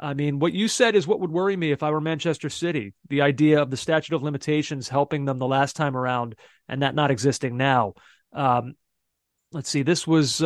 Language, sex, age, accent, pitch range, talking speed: English, male, 30-49, American, 140-165 Hz, 220 wpm